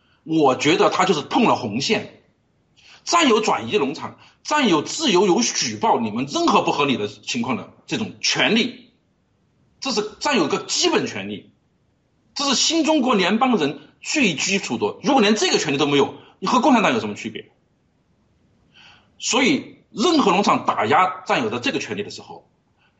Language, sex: Chinese, male